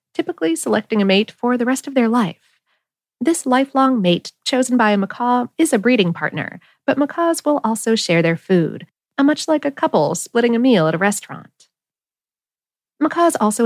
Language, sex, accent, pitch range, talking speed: English, female, American, 190-280 Hz, 175 wpm